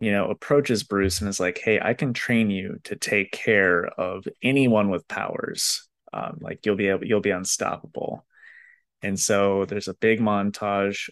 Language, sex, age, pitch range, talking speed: English, male, 20-39, 95-110 Hz, 180 wpm